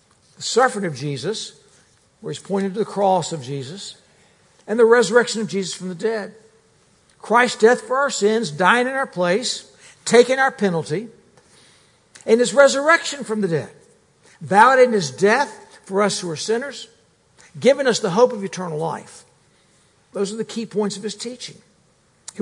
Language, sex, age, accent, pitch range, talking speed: English, male, 60-79, American, 190-240 Hz, 165 wpm